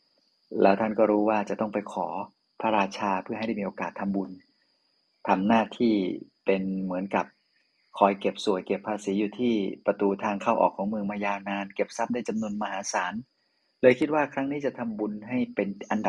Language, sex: Thai, male